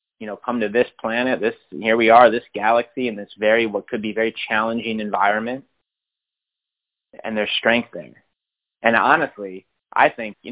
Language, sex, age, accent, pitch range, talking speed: English, male, 30-49, American, 120-155 Hz, 170 wpm